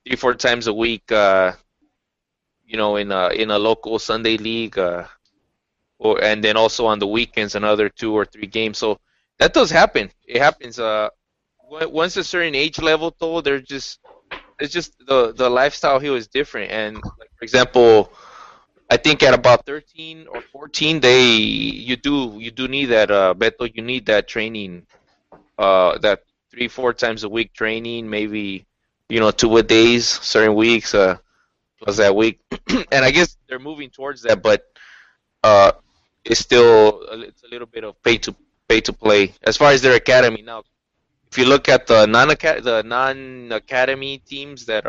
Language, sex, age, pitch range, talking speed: English, male, 20-39, 110-130 Hz, 175 wpm